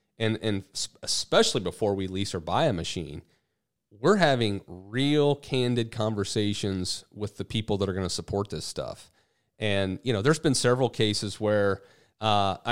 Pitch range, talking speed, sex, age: 100-120 Hz, 165 wpm, male, 30-49